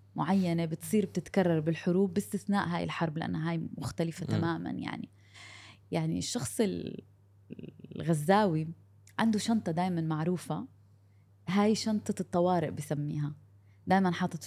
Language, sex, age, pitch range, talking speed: Arabic, female, 20-39, 140-180 Hz, 105 wpm